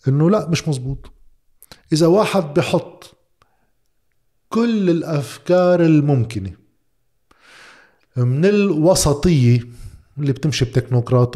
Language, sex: Arabic, male